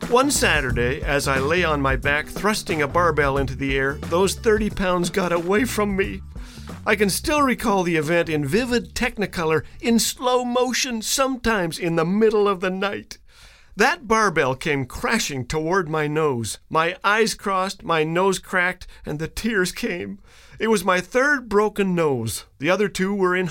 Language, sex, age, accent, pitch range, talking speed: English, male, 50-69, American, 145-215 Hz, 175 wpm